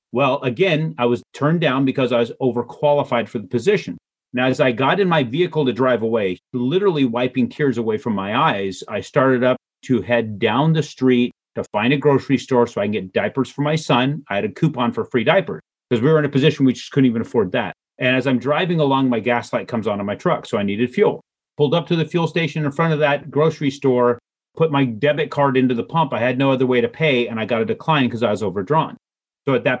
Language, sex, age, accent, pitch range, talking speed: English, male, 40-59, American, 120-150 Hz, 250 wpm